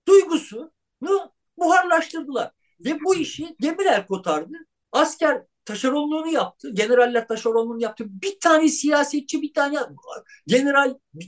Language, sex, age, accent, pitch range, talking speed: Turkish, male, 50-69, native, 230-320 Hz, 105 wpm